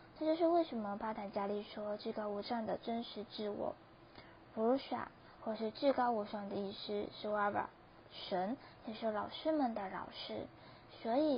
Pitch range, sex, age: 205-240 Hz, female, 20-39